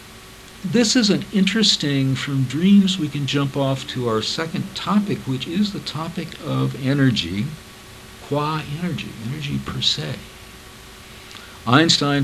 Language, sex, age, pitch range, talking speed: English, male, 60-79, 100-135 Hz, 125 wpm